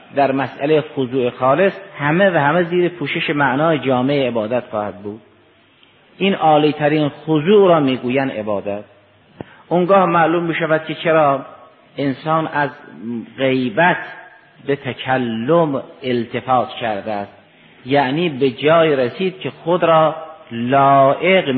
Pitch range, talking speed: 120-155 Hz, 110 wpm